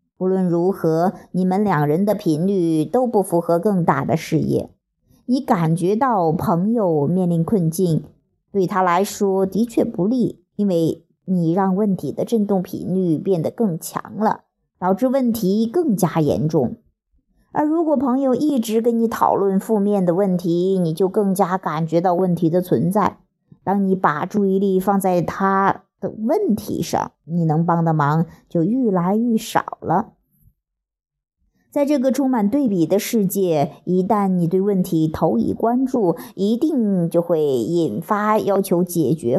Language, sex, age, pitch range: Chinese, male, 50-69, 175-225 Hz